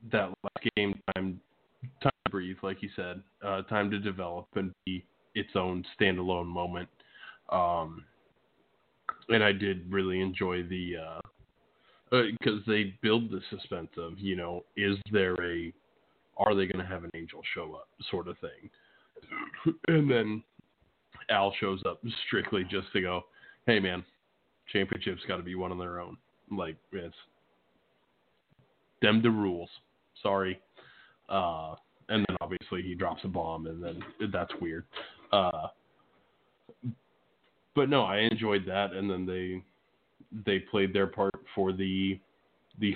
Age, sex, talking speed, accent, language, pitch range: 20-39, male, 150 wpm, American, English, 90-105 Hz